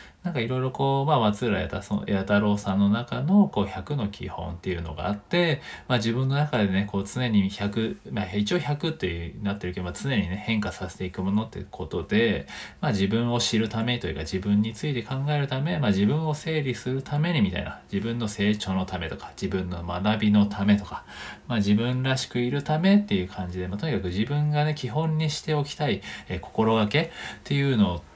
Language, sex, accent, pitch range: Japanese, male, native, 95-125 Hz